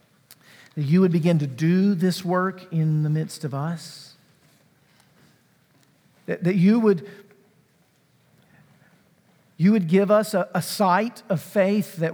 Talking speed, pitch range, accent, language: 135 wpm, 160-190 Hz, American, English